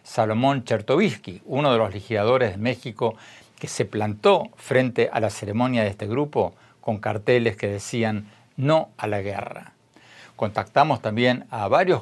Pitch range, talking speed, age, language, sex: 105-140 Hz, 150 wpm, 60-79, Spanish, male